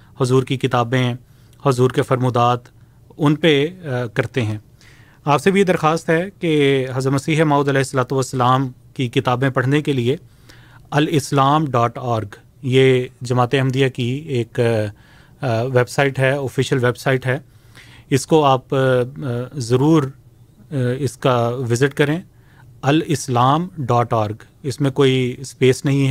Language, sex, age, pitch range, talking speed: Urdu, male, 30-49, 125-145 Hz, 130 wpm